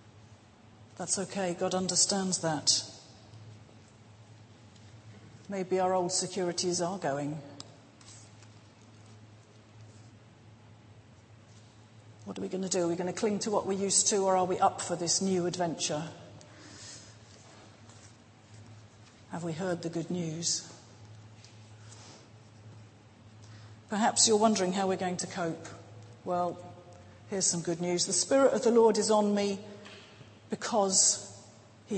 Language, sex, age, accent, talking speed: English, female, 40-59, British, 120 wpm